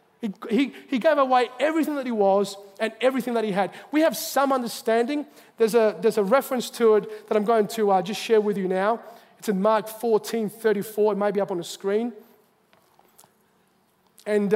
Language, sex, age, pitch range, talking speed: English, male, 30-49, 190-235 Hz, 190 wpm